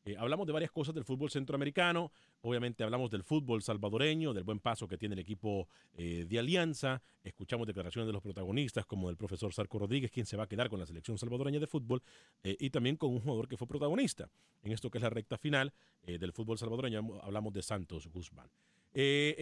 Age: 40-59